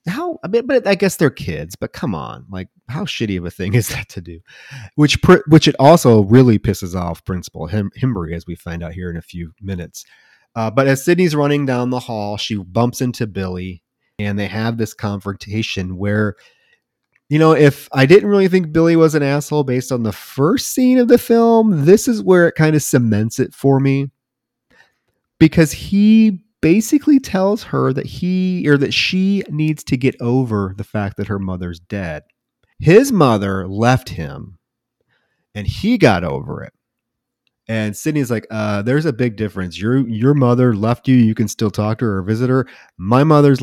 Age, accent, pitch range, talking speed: 30-49, American, 105-150 Hz, 195 wpm